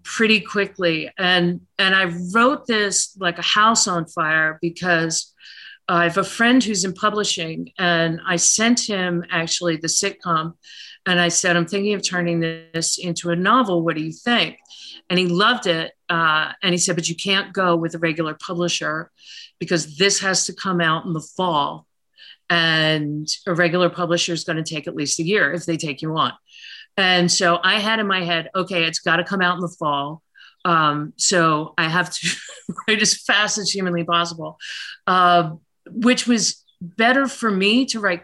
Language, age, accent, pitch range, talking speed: English, 50-69, American, 165-200 Hz, 185 wpm